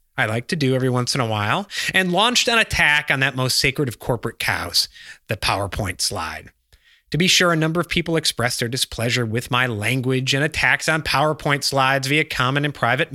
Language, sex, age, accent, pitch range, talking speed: English, male, 30-49, American, 130-185 Hz, 205 wpm